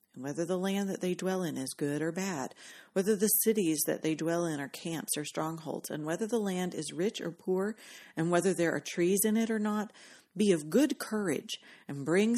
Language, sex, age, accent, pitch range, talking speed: English, female, 40-59, American, 155-205 Hz, 225 wpm